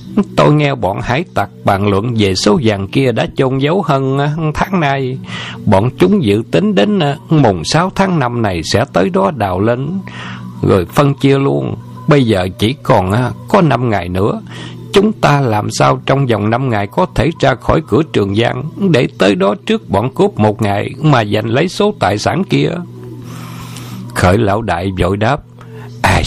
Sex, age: male, 60-79